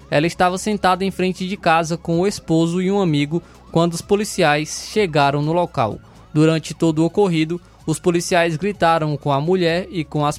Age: 20-39